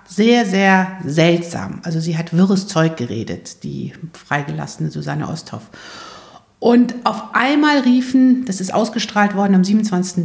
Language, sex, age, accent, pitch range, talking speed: German, female, 50-69, German, 190-230 Hz, 135 wpm